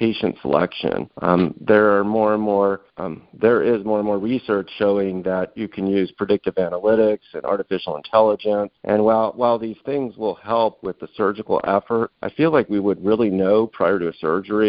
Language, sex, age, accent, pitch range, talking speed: English, male, 50-69, American, 95-110 Hz, 190 wpm